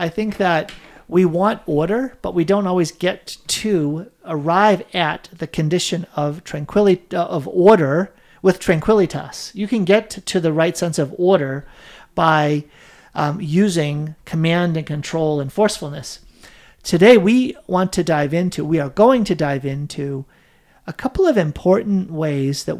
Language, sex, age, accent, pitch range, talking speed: English, male, 50-69, American, 155-200 Hz, 150 wpm